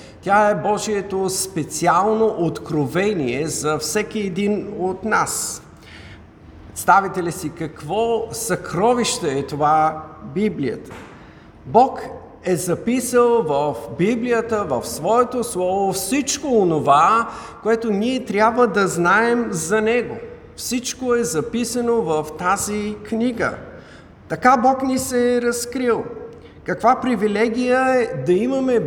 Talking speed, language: 110 wpm, Bulgarian